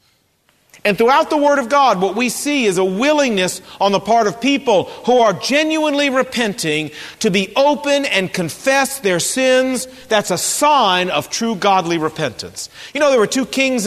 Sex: male